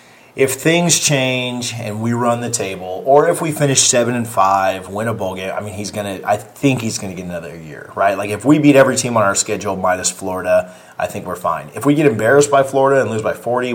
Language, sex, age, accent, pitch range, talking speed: English, male, 30-49, American, 95-125 Hz, 240 wpm